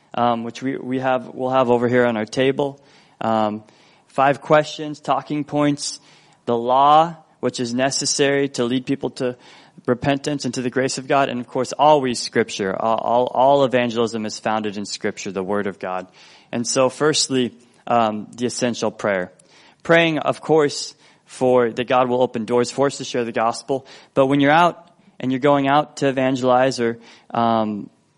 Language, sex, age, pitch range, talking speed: English, male, 20-39, 120-140 Hz, 180 wpm